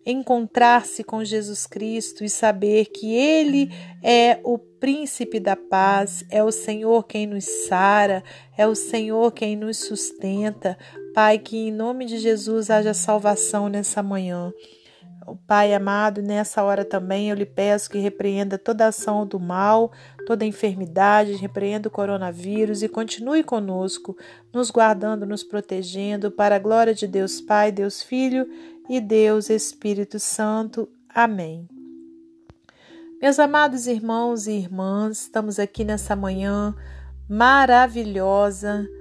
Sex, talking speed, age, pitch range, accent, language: female, 130 wpm, 40-59, 195-230 Hz, Brazilian, Portuguese